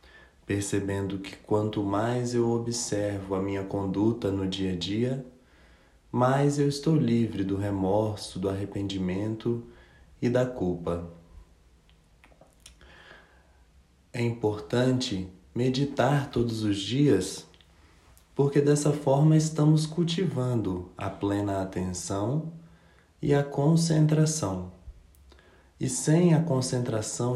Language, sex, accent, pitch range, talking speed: English, male, Brazilian, 95-130 Hz, 100 wpm